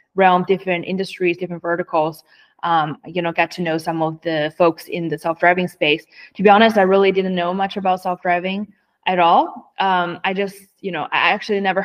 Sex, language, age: female, English, 20-39